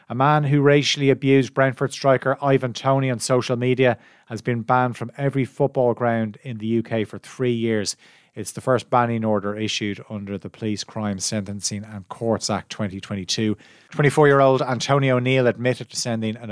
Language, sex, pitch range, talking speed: English, male, 105-125 Hz, 170 wpm